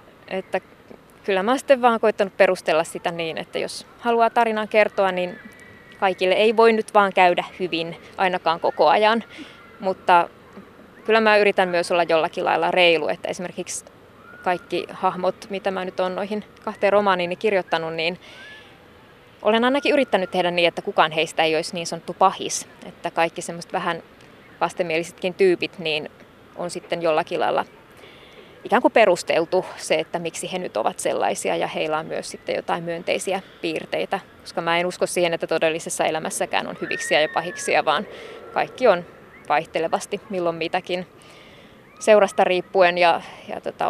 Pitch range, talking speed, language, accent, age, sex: 175-205 Hz, 150 wpm, Finnish, native, 20-39, female